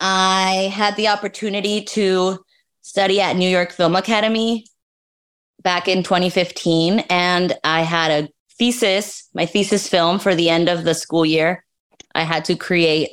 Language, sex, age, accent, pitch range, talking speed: English, female, 20-39, American, 165-190 Hz, 150 wpm